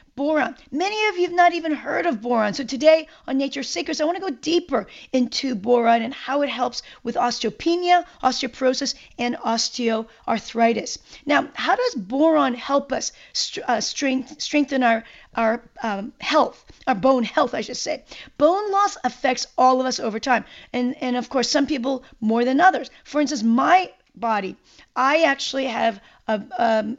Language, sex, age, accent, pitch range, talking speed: English, female, 40-59, American, 235-290 Hz, 170 wpm